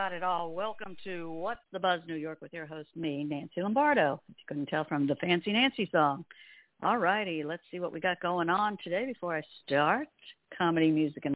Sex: female